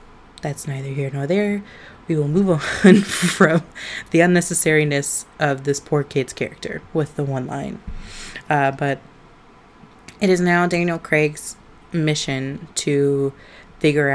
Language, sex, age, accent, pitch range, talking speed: English, female, 20-39, American, 140-155 Hz, 130 wpm